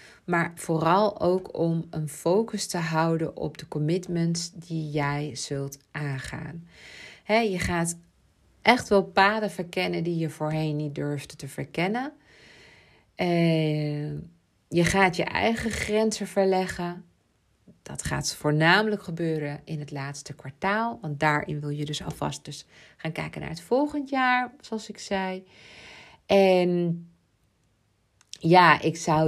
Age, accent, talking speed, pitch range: 40-59, Dutch, 125 wpm, 145-175 Hz